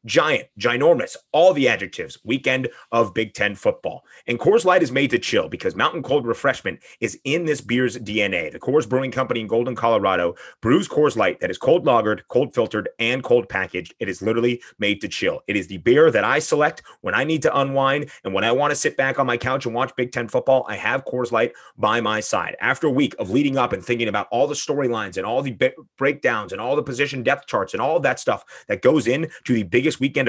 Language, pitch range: English, 110-145 Hz